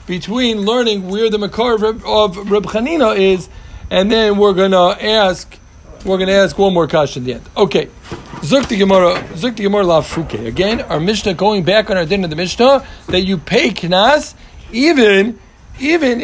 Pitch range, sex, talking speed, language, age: 165-200 Hz, male, 165 wpm, English, 50-69